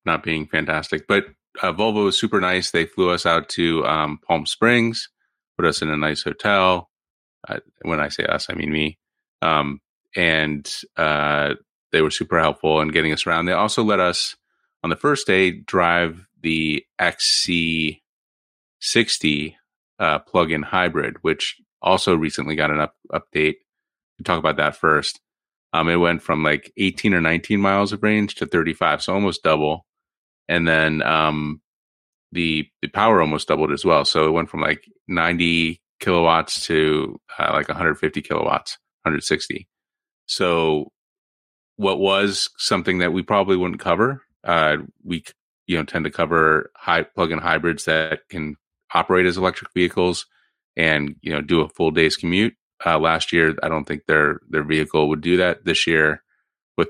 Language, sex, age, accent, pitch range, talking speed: English, male, 30-49, American, 75-90 Hz, 170 wpm